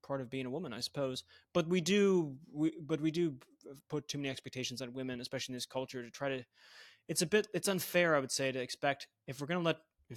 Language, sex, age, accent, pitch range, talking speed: English, male, 20-39, American, 130-165 Hz, 250 wpm